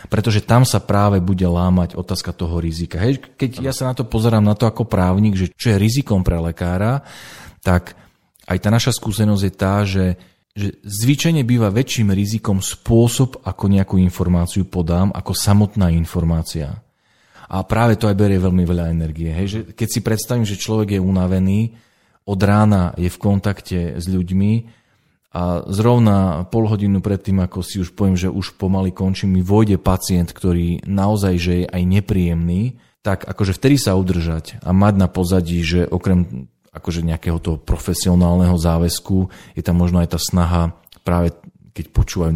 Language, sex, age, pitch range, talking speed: Slovak, male, 40-59, 90-105 Hz, 165 wpm